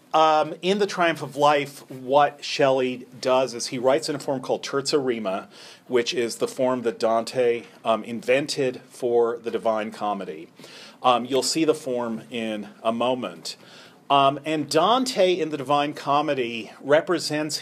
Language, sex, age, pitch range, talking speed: English, male, 40-59, 115-145 Hz, 155 wpm